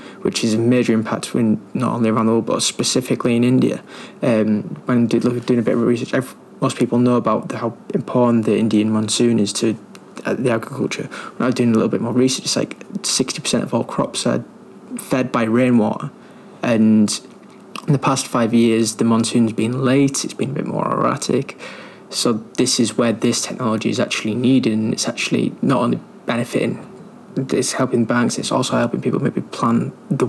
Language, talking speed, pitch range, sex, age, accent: English, 185 wpm, 115-130 Hz, male, 20-39, British